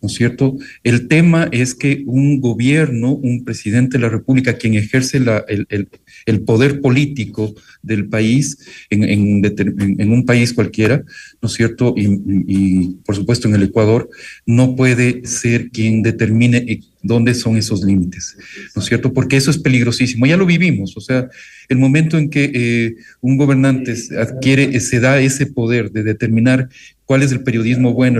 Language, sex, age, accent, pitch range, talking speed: Spanish, male, 40-59, Mexican, 110-130 Hz, 170 wpm